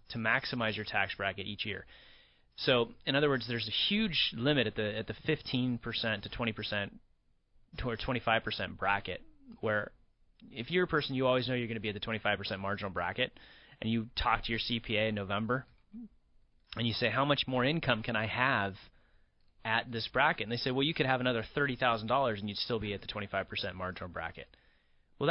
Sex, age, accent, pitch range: male, 30-49, American, 105-125 Hz